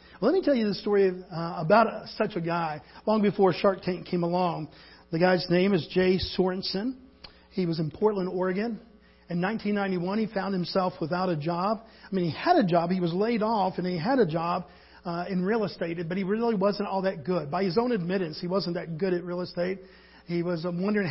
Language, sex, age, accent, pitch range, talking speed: English, male, 40-59, American, 175-210 Hz, 220 wpm